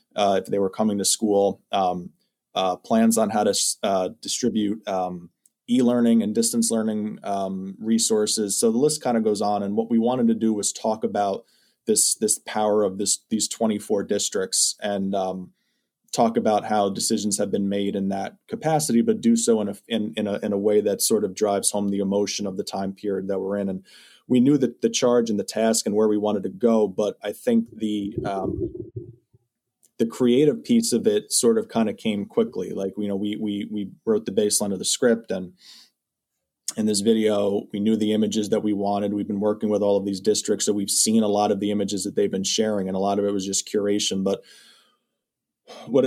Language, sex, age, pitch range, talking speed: English, male, 20-39, 100-115 Hz, 220 wpm